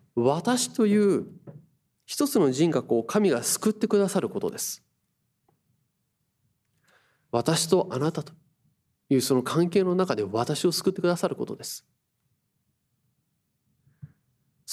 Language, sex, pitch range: Japanese, male, 135-190 Hz